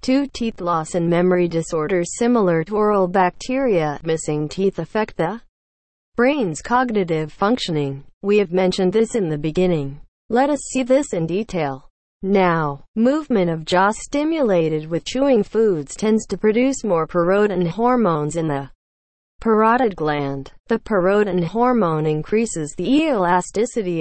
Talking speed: 135 wpm